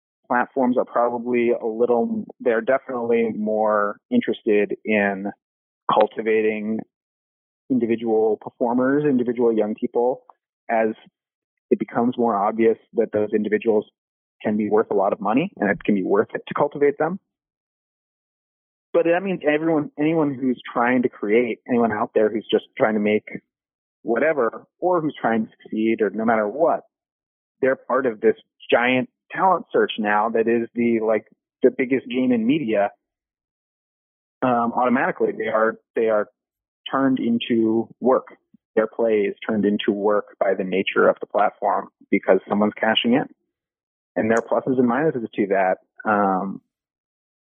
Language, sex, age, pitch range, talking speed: English, male, 30-49, 105-130 Hz, 150 wpm